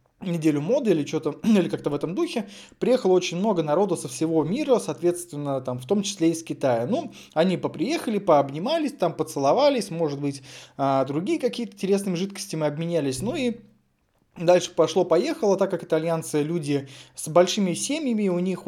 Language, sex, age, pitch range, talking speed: Russian, male, 20-39, 150-195 Hz, 165 wpm